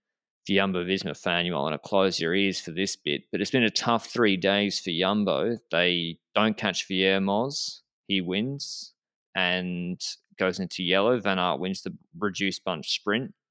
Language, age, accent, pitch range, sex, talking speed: English, 20-39, Australian, 95-125 Hz, male, 180 wpm